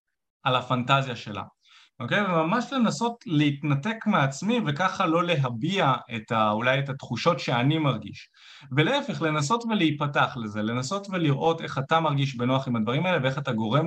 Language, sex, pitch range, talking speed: Hebrew, male, 125-180 Hz, 145 wpm